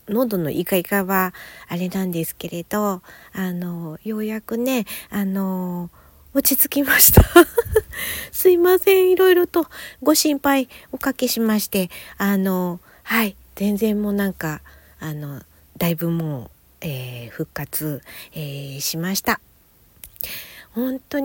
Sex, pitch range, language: female, 170-240 Hz, Japanese